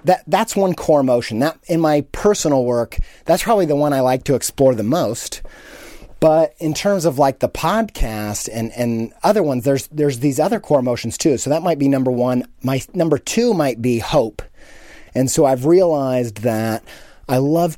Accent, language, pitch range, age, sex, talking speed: American, English, 115-155 Hz, 30-49, male, 190 wpm